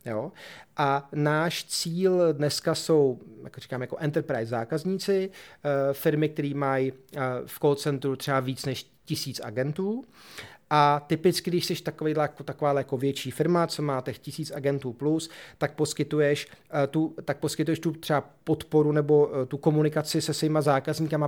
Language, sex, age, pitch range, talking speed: Czech, male, 30-49, 140-165 Hz, 145 wpm